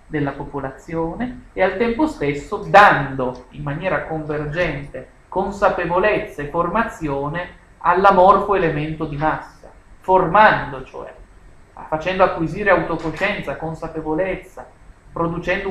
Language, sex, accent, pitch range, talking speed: Italian, male, native, 145-195 Hz, 90 wpm